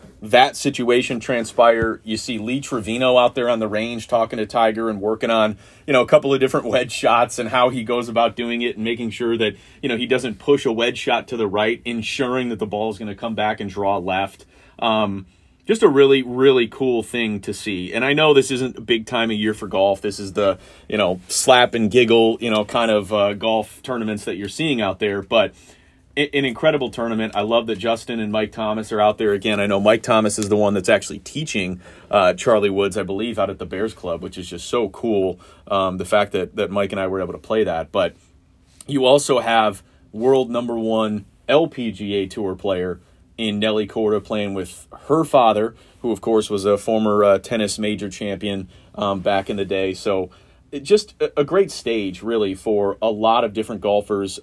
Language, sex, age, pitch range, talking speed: English, male, 30-49, 100-120 Hz, 220 wpm